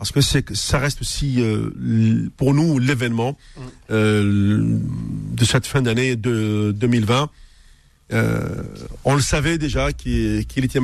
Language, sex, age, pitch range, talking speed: French, male, 50-69, 115-140 Hz, 145 wpm